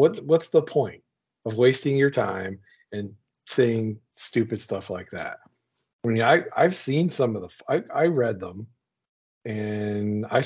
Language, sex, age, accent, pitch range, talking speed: English, male, 40-59, American, 100-125 Hz, 160 wpm